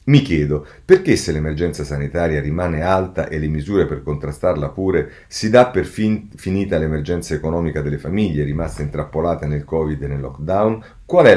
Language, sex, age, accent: Italian, male, 40-59, native